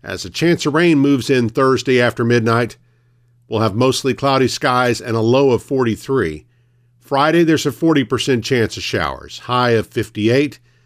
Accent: American